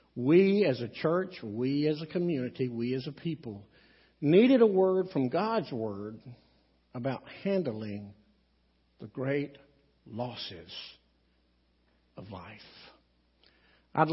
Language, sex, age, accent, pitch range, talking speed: English, male, 60-79, American, 120-185 Hz, 110 wpm